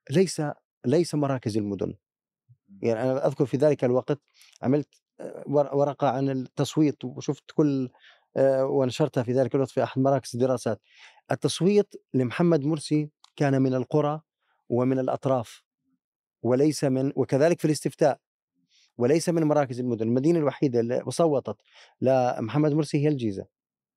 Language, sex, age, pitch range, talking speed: Arabic, male, 30-49, 125-150 Hz, 125 wpm